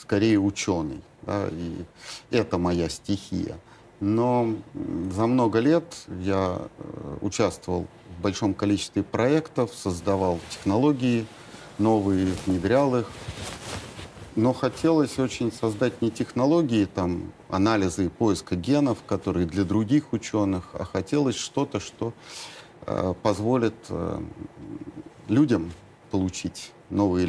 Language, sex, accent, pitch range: Russian, male, native, 95-125 Hz